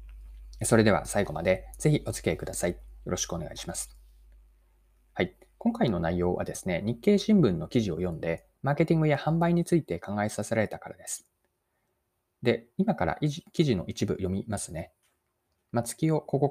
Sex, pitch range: male, 90-140 Hz